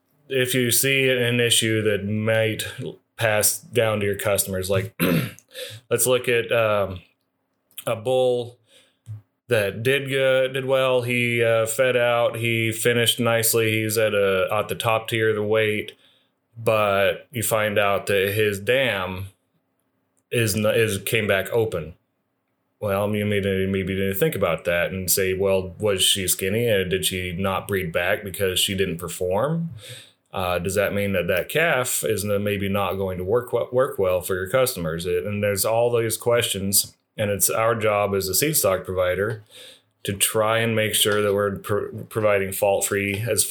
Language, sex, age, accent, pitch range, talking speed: English, male, 30-49, American, 95-115 Hz, 165 wpm